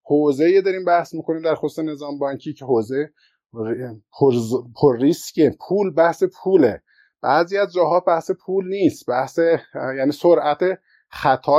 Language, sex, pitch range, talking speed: Persian, male, 140-175 Hz, 130 wpm